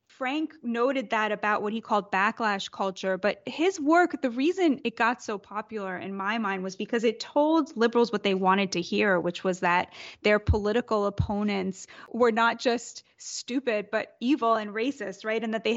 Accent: American